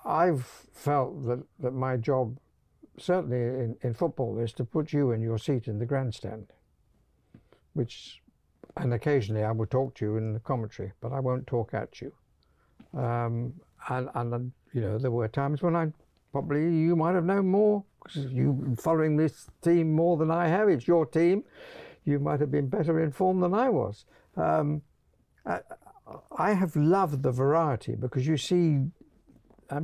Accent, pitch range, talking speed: British, 125-170 Hz, 175 wpm